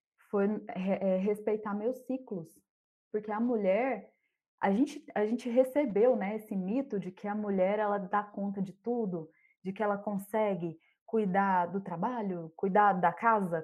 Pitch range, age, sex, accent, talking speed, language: 185-230 Hz, 20-39, female, Brazilian, 155 wpm, Portuguese